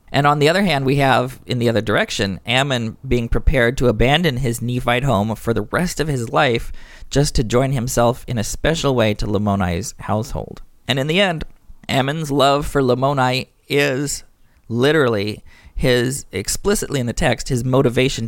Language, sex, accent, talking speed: English, male, American, 175 wpm